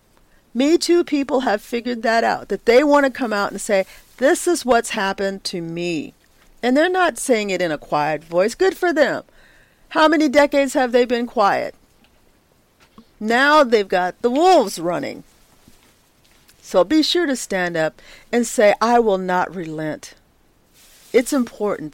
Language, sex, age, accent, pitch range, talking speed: English, female, 50-69, American, 180-255 Hz, 165 wpm